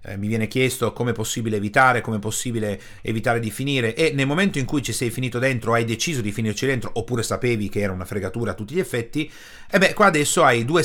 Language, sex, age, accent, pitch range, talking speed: Italian, male, 40-59, native, 110-150 Hz, 240 wpm